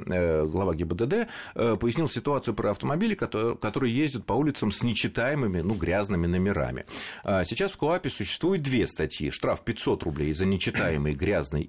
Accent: native